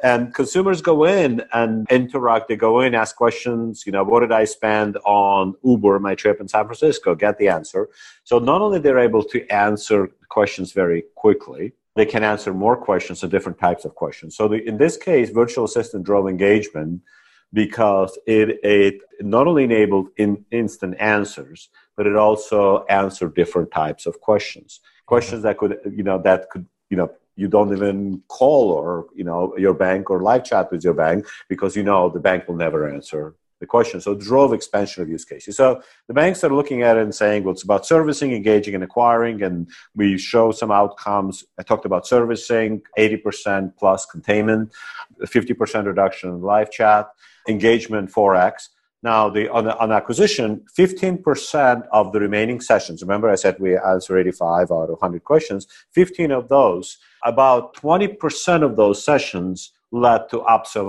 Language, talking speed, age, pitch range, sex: English, 175 wpm, 50-69, 100-120 Hz, male